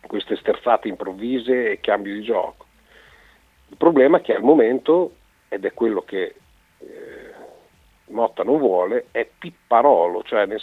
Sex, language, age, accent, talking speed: male, Italian, 50-69, native, 140 wpm